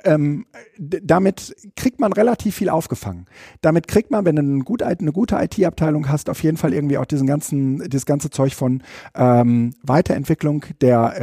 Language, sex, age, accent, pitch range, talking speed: German, male, 50-69, German, 135-175 Hz, 160 wpm